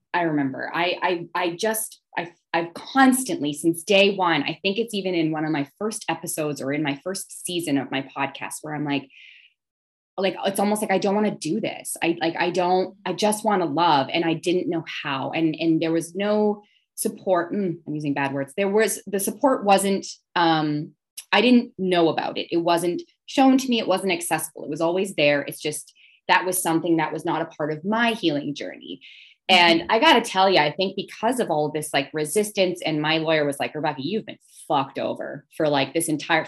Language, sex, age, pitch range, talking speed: English, female, 20-39, 155-210 Hz, 220 wpm